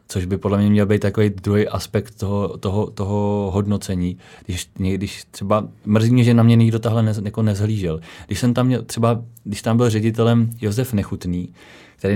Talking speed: 185 wpm